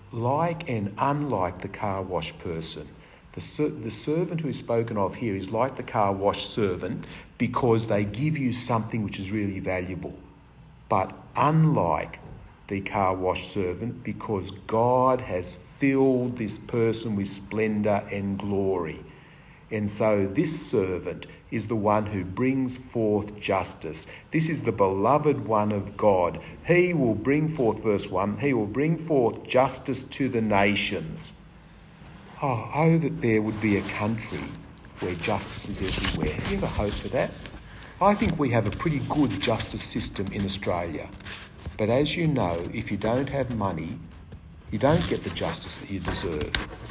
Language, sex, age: English, male, 50-69